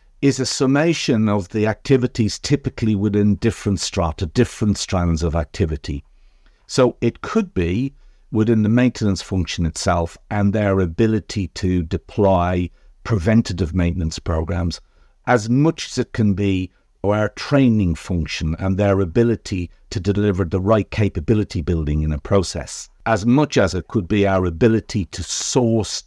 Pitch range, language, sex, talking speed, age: 90-115 Hz, English, male, 145 wpm, 50-69